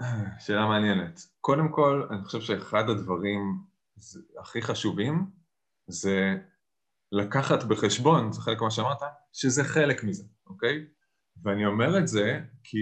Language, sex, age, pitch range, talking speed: Hebrew, male, 20-39, 110-165 Hz, 120 wpm